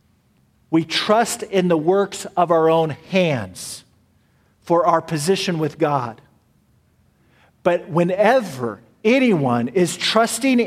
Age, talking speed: 50-69, 105 wpm